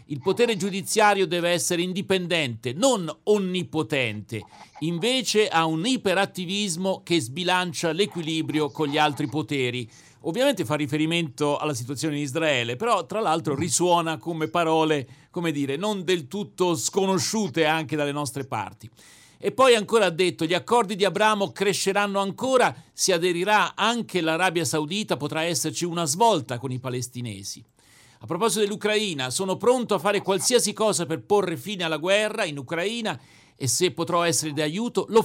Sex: male